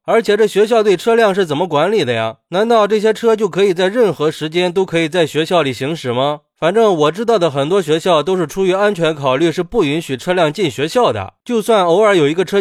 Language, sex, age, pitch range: Chinese, male, 20-39, 150-205 Hz